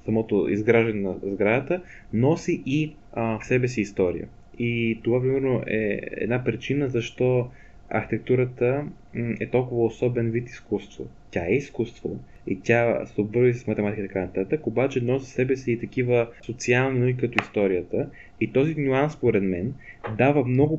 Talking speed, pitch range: 155 wpm, 110-140 Hz